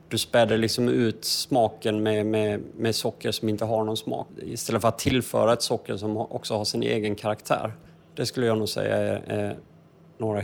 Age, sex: 30-49, male